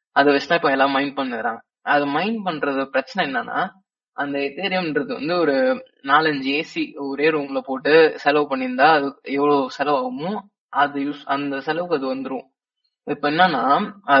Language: Tamil